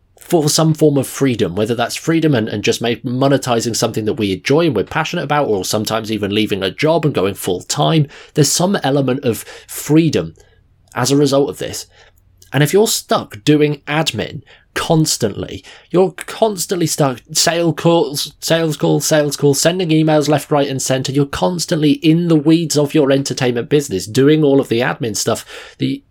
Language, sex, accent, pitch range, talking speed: English, male, British, 120-160 Hz, 180 wpm